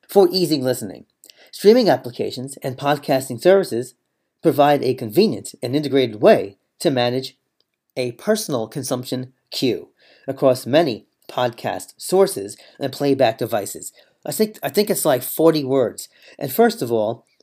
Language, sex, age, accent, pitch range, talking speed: English, male, 40-59, American, 125-175 Hz, 130 wpm